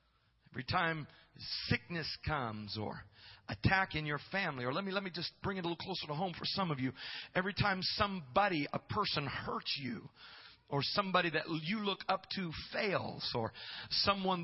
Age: 40-59